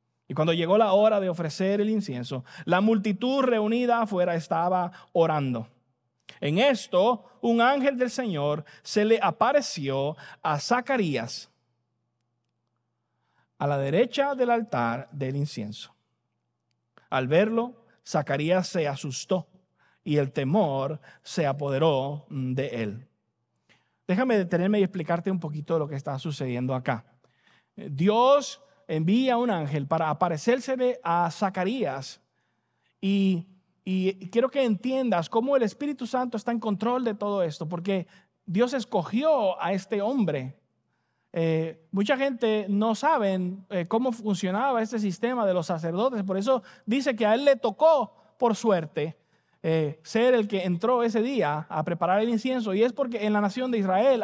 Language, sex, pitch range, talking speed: English, male, 155-235 Hz, 140 wpm